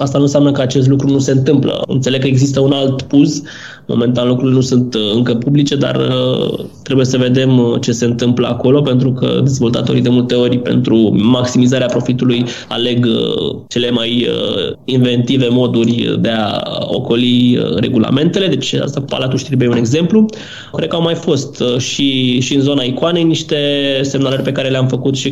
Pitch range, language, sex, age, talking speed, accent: 125-145 Hz, Romanian, male, 20-39, 170 wpm, native